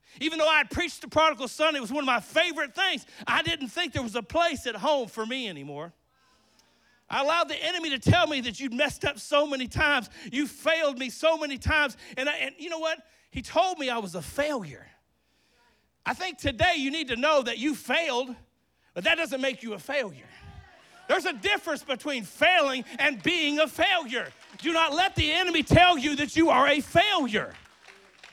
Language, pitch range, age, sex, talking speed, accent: English, 230-315 Hz, 40-59, male, 210 wpm, American